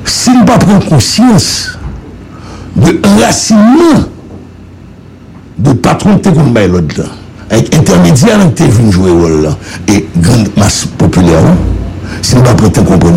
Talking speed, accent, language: 135 wpm, French, English